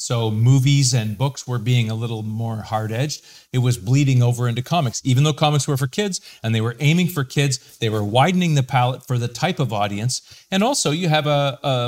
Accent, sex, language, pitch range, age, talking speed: American, male, English, 115-140 Hz, 40-59, 220 wpm